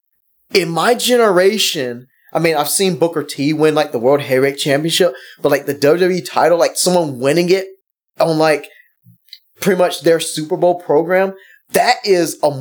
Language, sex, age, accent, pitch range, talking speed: English, male, 20-39, American, 145-185 Hz, 165 wpm